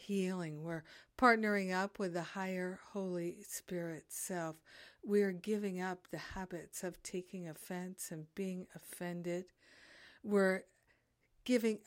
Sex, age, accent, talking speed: female, 50-69, American, 115 wpm